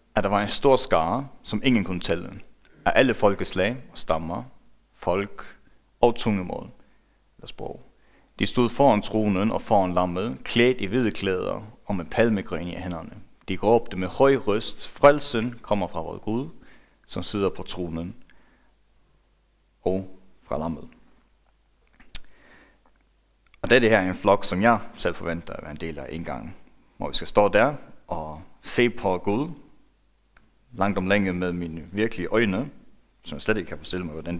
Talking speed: 165 wpm